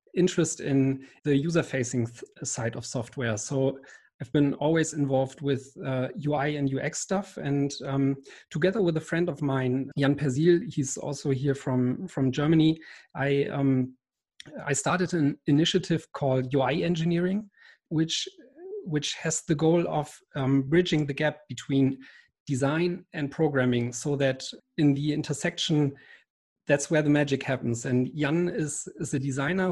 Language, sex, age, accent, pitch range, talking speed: English, male, 40-59, German, 135-160 Hz, 150 wpm